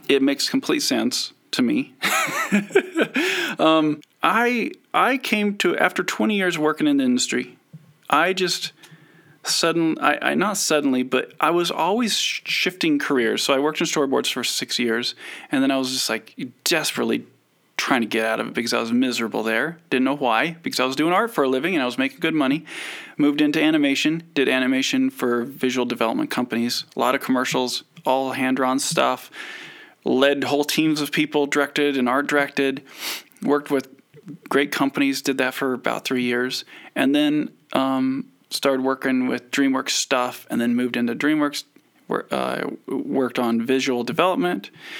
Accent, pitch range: American, 130-170 Hz